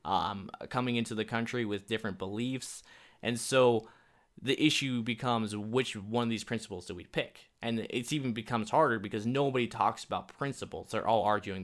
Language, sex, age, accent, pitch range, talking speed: English, male, 20-39, American, 100-120 Hz, 175 wpm